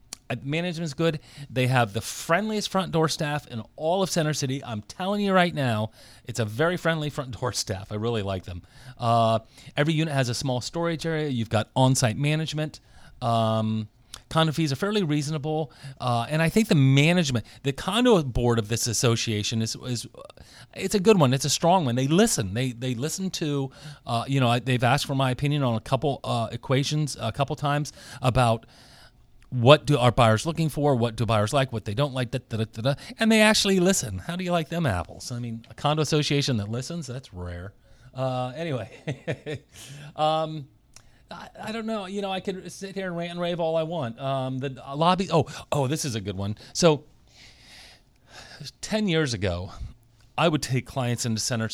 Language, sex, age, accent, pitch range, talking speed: English, male, 30-49, American, 115-155 Hz, 200 wpm